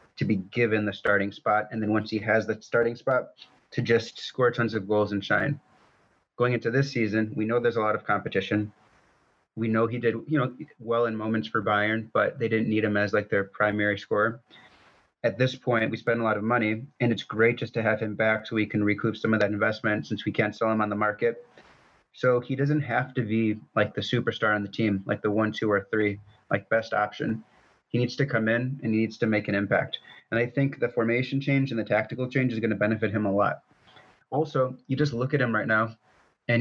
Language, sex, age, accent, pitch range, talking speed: English, male, 30-49, American, 105-120 Hz, 240 wpm